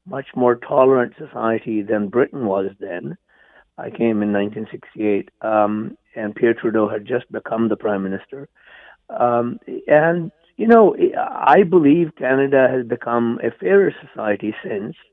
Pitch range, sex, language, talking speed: 115-140 Hz, male, English, 140 wpm